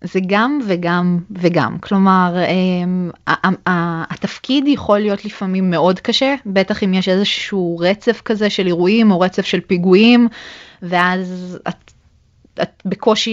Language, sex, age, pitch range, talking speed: Hebrew, female, 20-39, 180-220 Hz, 130 wpm